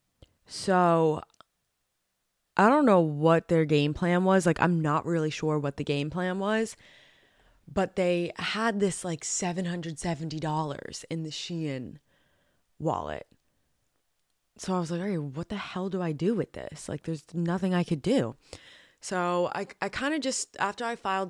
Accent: American